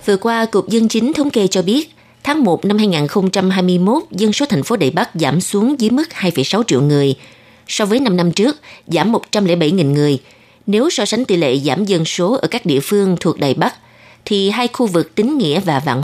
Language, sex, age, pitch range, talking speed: Vietnamese, female, 20-39, 160-220 Hz, 215 wpm